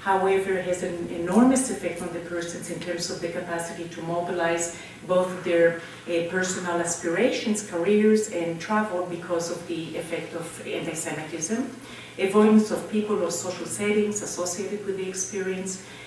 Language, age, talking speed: English, 40-59, 155 wpm